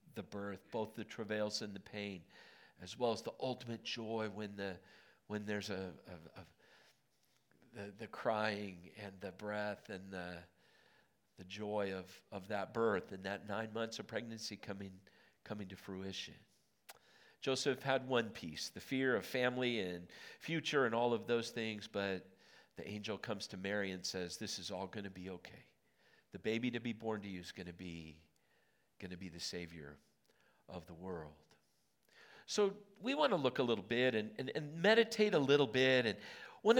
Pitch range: 100-135 Hz